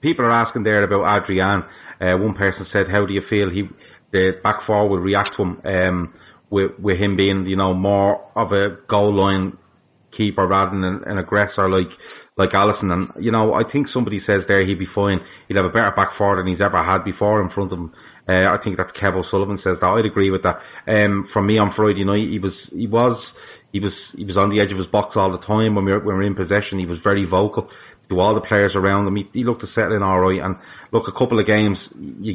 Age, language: 30-49, English